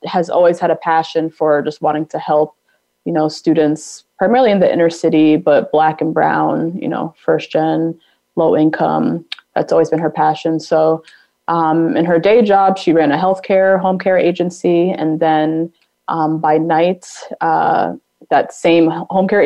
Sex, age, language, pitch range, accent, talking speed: female, 20-39, English, 160-190 Hz, American, 175 wpm